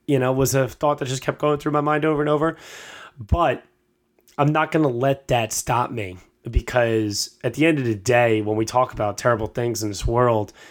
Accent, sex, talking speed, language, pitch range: American, male, 225 wpm, English, 110-140 Hz